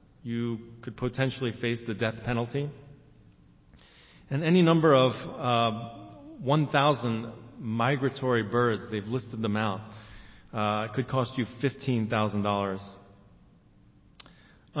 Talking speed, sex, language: 95 wpm, male, English